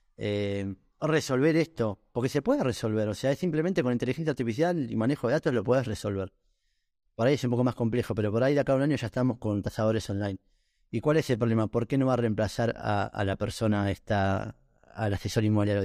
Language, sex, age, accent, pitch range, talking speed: Spanish, male, 30-49, Argentinian, 110-145 Hz, 225 wpm